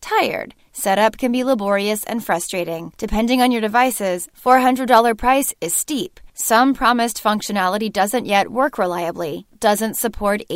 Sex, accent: female, American